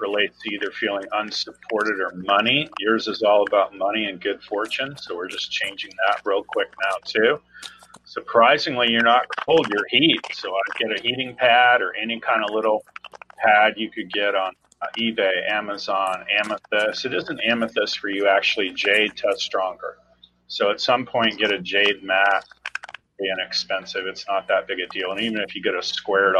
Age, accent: 40-59, American